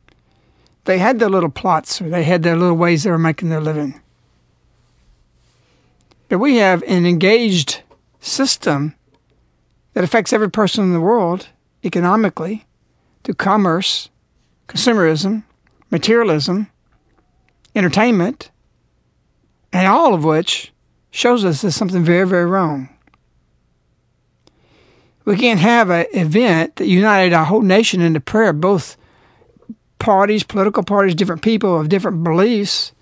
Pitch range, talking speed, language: 165-215 Hz, 120 wpm, English